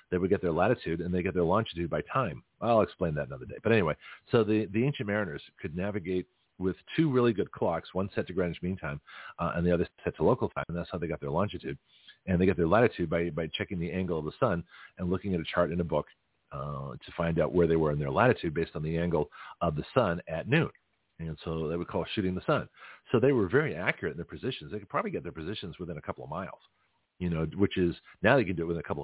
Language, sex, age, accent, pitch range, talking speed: English, male, 40-59, American, 85-110 Hz, 270 wpm